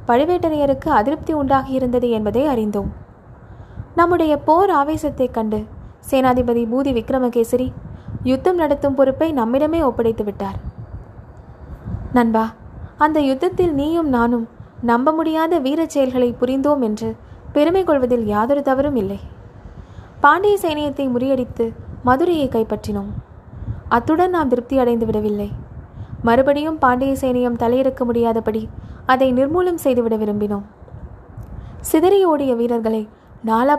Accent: native